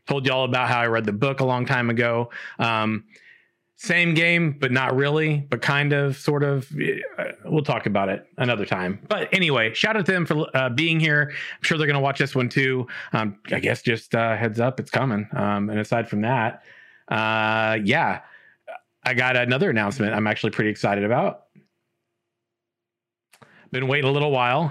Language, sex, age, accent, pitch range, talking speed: English, male, 30-49, American, 115-145 Hz, 190 wpm